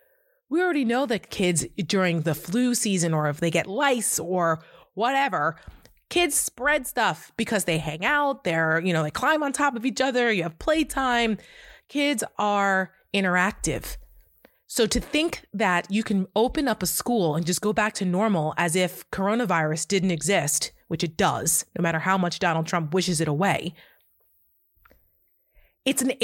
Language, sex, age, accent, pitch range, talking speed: English, female, 30-49, American, 170-240 Hz, 170 wpm